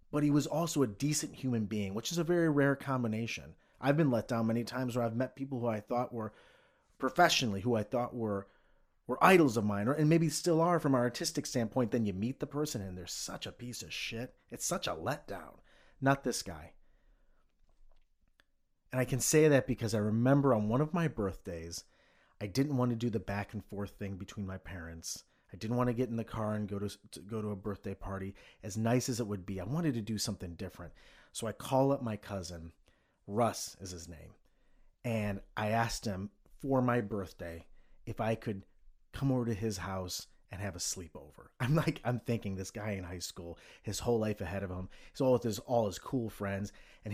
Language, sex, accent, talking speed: English, male, American, 220 wpm